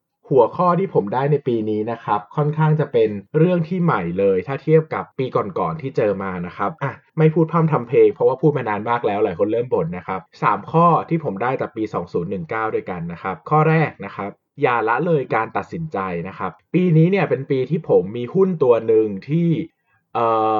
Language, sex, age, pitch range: Thai, male, 20-39, 110-165 Hz